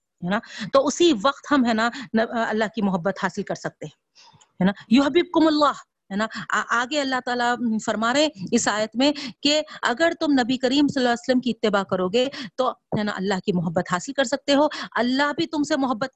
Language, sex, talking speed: Urdu, female, 185 wpm